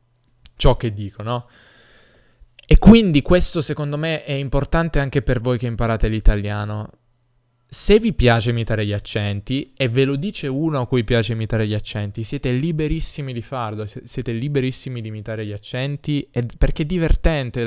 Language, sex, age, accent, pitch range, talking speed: Italian, male, 10-29, native, 110-130 Hz, 165 wpm